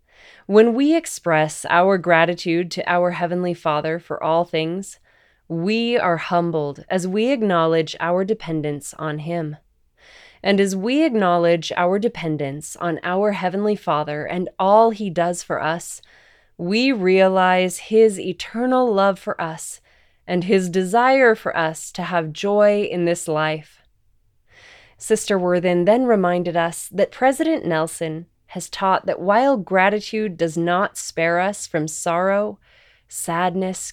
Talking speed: 135 wpm